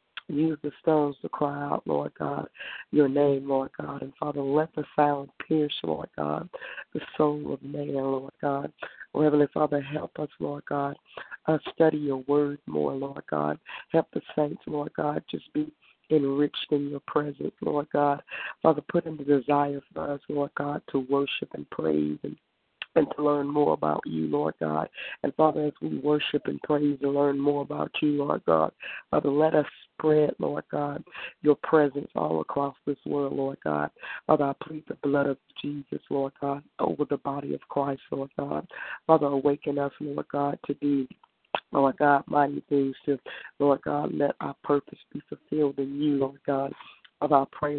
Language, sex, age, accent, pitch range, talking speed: English, female, 60-79, American, 140-150 Hz, 180 wpm